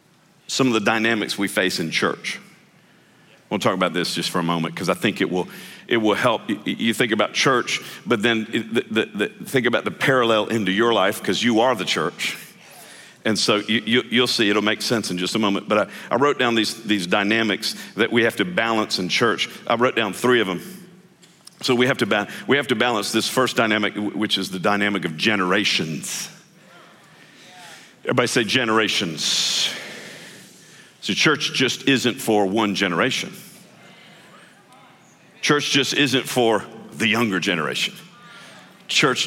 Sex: male